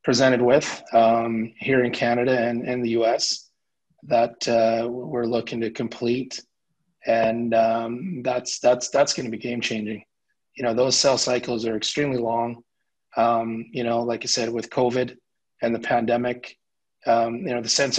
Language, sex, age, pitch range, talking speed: English, male, 30-49, 115-125 Hz, 165 wpm